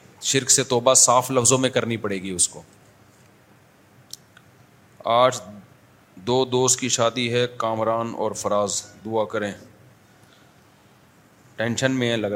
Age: 30-49